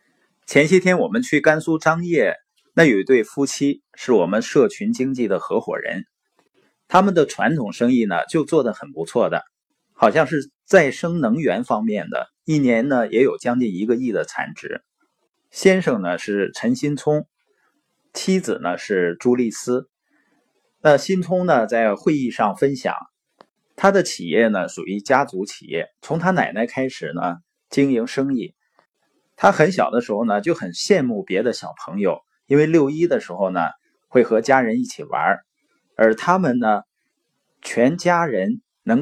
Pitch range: 130-185 Hz